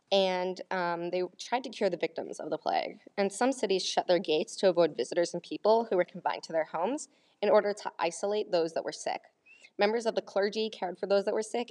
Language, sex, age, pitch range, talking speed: English, female, 20-39, 170-210 Hz, 235 wpm